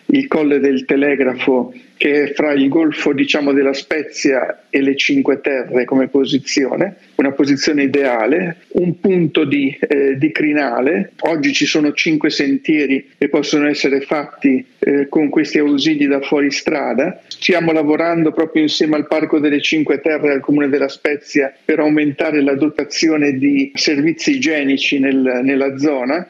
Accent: native